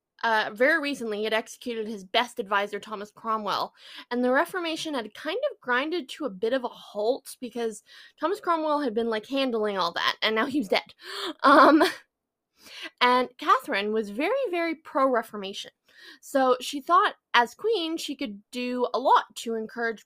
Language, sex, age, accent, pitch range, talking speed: English, female, 20-39, American, 220-280 Hz, 170 wpm